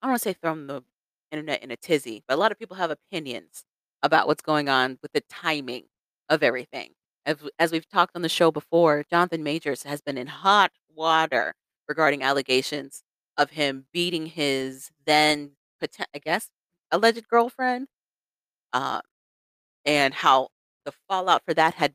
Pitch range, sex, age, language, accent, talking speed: 140-185 Hz, female, 30-49, English, American, 165 wpm